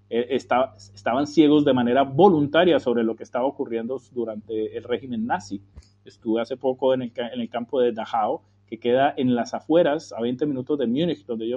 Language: Spanish